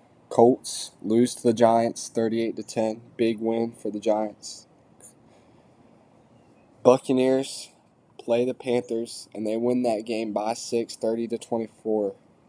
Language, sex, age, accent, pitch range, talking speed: English, male, 10-29, American, 100-120 Hz, 110 wpm